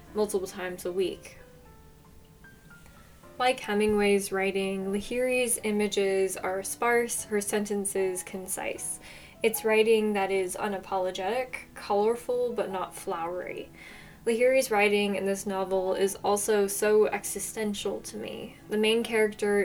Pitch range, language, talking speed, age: 190-220 Hz, English, 115 wpm, 10-29